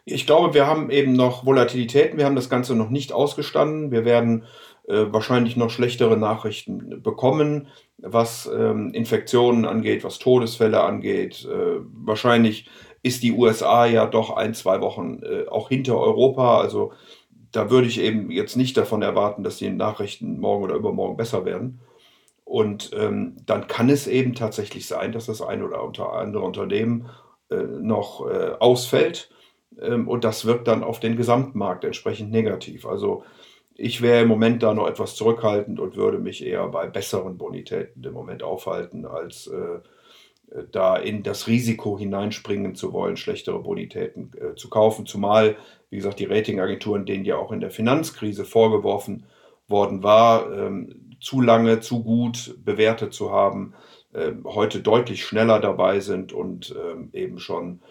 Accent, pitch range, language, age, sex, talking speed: German, 110-135 Hz, German, 50-69, male, 150 wpm